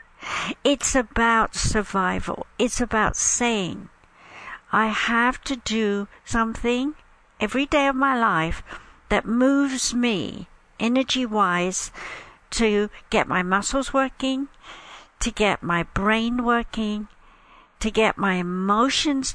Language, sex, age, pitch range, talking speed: English, female, 60-79, 200-260 Hz, 105 wpm